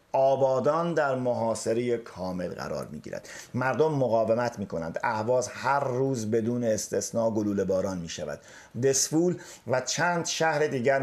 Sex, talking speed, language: male, 120 wpm, Persian